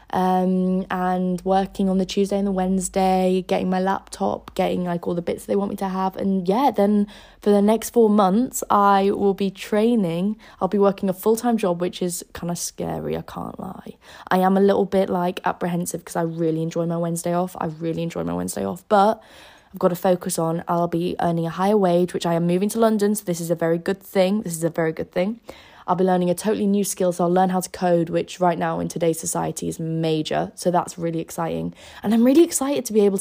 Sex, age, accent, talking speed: female, 10-29, British, 240 wpm